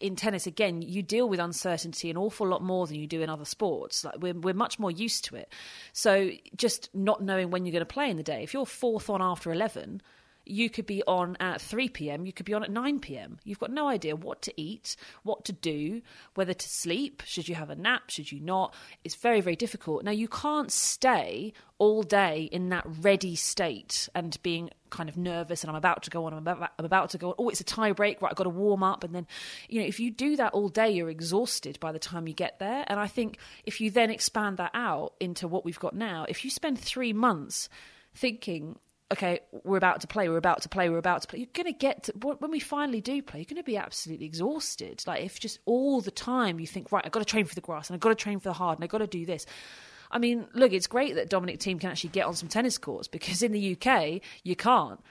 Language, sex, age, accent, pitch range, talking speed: English, female, 30-49, British, 175-230 Hz, 260 wpm